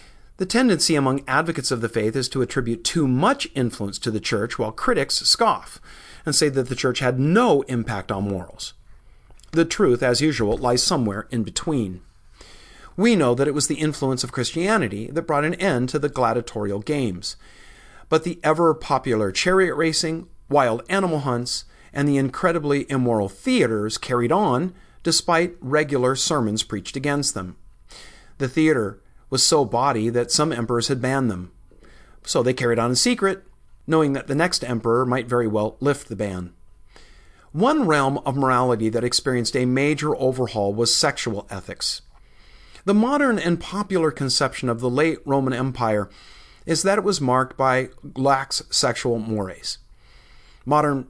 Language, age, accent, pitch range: English, 50-69, American, 115-155 Hz